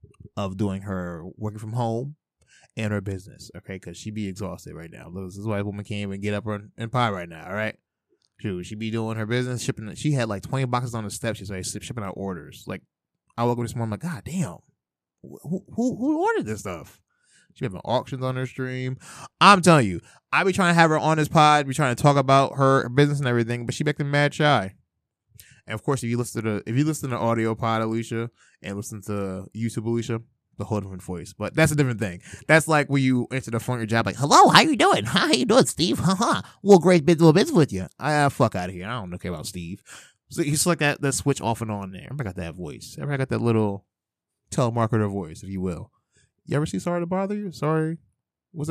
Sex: male